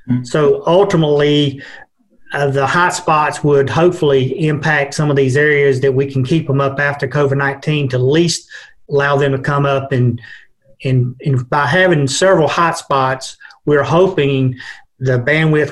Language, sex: English, male